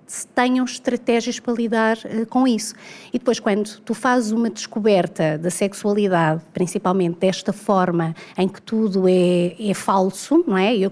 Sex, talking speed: female, 145 wpm